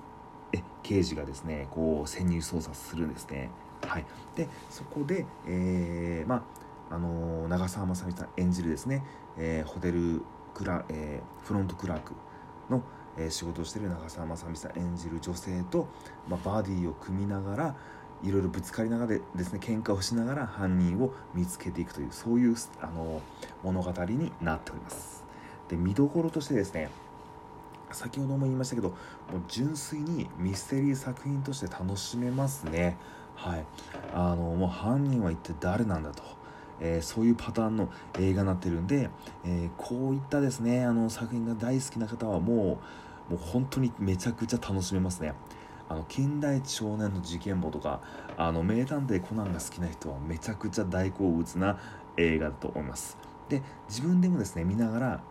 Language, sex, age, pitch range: Japanese, male, 40-59, 85-120 Hz